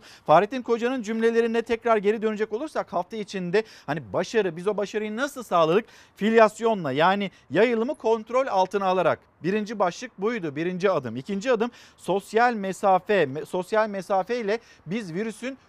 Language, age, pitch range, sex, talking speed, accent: Turkish, 50-69, 170-230 Hz, male, 135 wpm, native